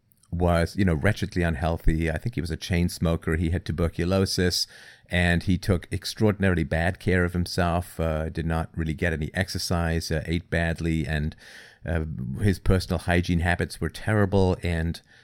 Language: English